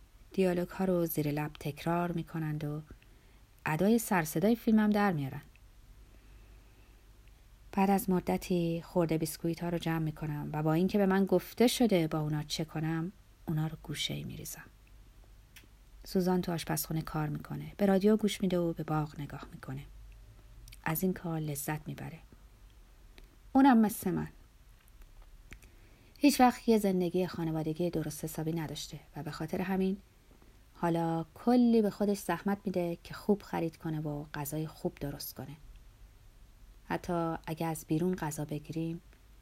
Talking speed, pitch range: 145 wpm, 135-175 Hz